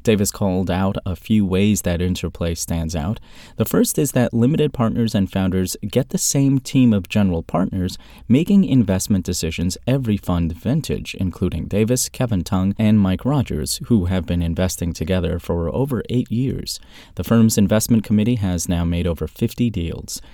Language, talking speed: English, 170 wpm